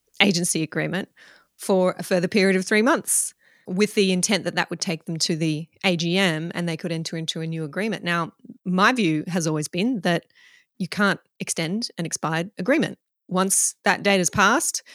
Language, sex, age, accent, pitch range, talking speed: English, female, 30-49, Australian, 170-210 Hz, 185 wpm